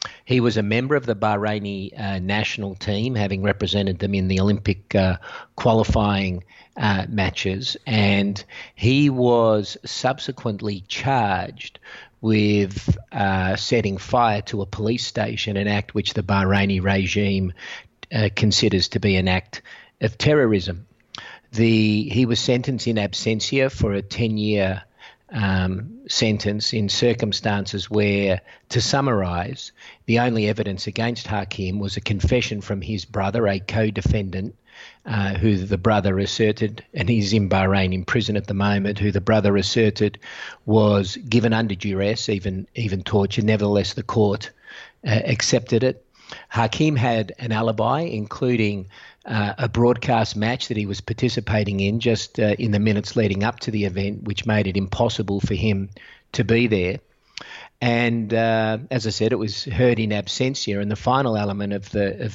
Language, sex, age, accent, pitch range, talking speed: English, male, 50-69, Australian, 100-115 Hz, 150 wpm